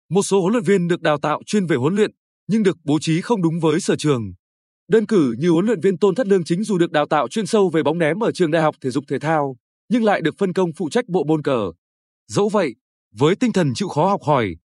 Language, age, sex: Vietnamese, 20-39, male